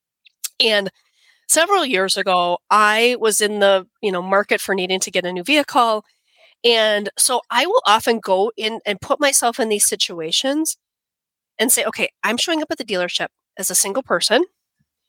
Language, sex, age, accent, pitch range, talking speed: English, female, 30-49, American, 200-265 Hz, 175 wpm